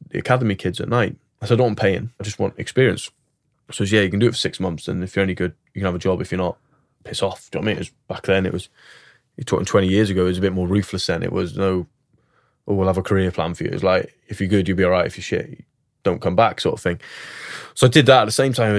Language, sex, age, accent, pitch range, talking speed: English, male, 20-39, British, 95-110 Hz, 325 wpm